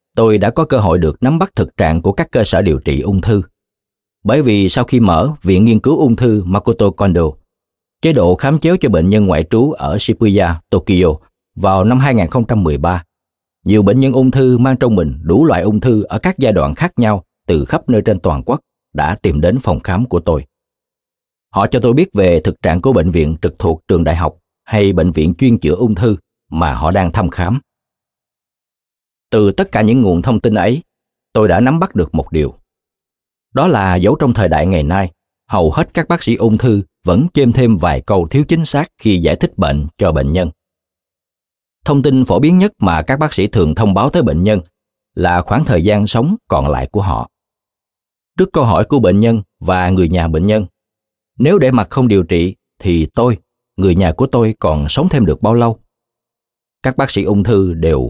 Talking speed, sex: 215 wpm, male